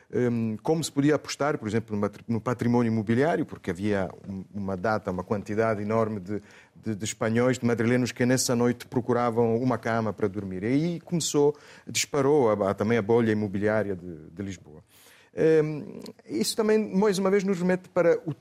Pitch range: 115-160 Hz